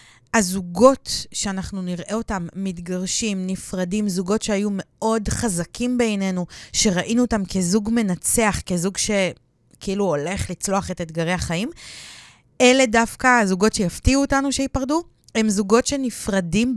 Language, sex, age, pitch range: Hebrew, female, 20-39, 180-230 Hz